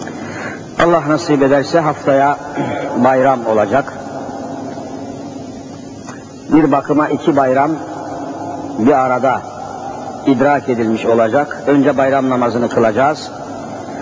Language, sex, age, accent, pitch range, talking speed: Turkish, male, 60-79, native, 135-155 Hz, 80 wpm